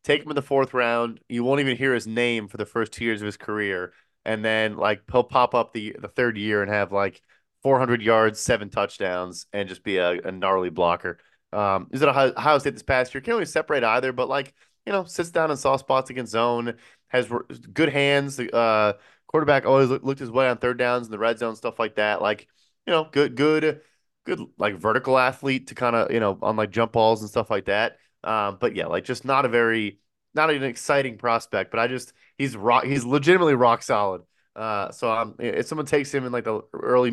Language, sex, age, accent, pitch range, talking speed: English, male, 20-39, American, 105-135 Hz, 235 wpm